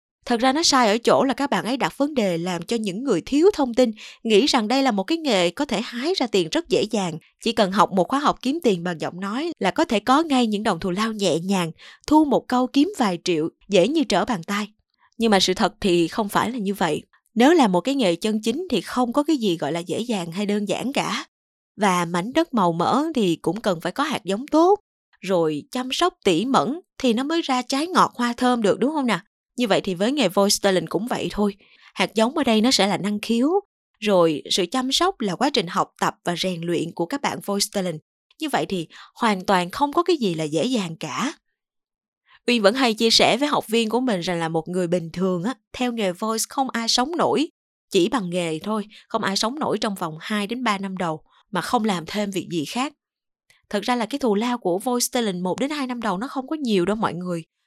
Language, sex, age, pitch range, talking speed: Vietnamese, female, 20-39, 185-260 Hz, 250 wpm